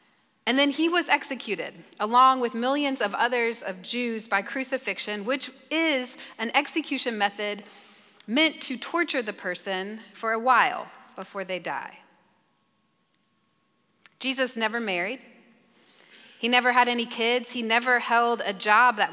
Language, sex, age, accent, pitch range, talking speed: English, female, 30-49, American, 215-260 Hz, 140 wpm